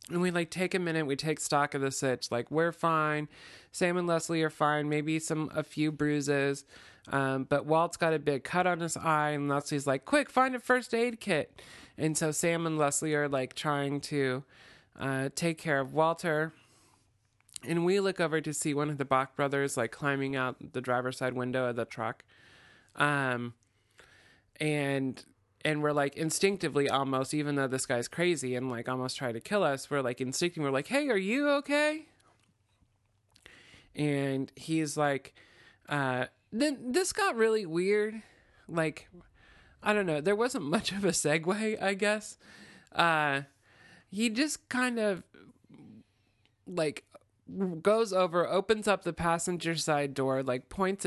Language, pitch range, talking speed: English, 135-175 Hz, 170 wpm